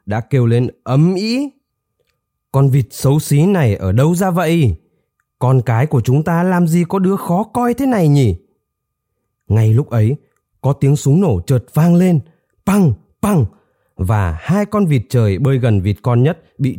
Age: 20-39